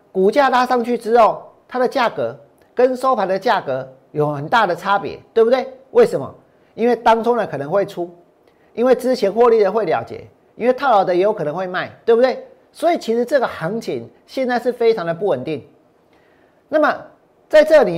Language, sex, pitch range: Chinese, male, 190-250 Hz